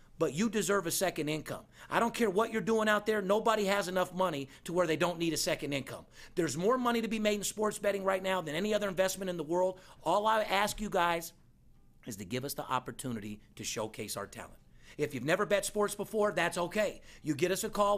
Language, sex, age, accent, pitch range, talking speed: English, male, 40-59, American, 150-195 Hz, 240 wpm